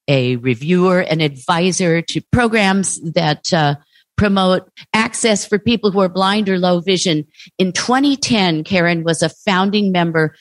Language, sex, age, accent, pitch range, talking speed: English, female, 50-69, American, 155-190 Hz, 145 wpm